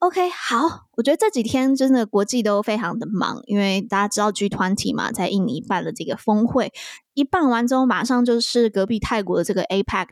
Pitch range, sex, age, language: 200-250 Hz, female, 20-39, Chinese